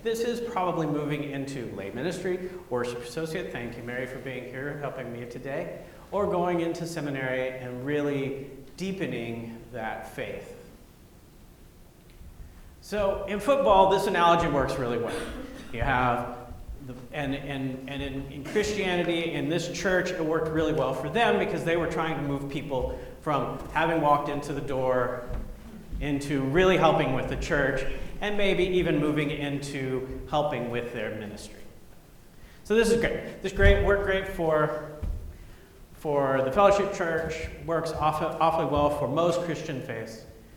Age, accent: 40-59, American